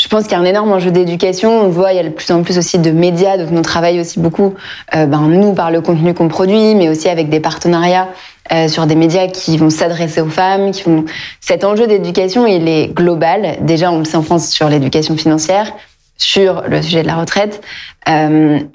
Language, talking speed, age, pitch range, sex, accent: French, 230 wpm, 20-39, 160-190 Hz, female, French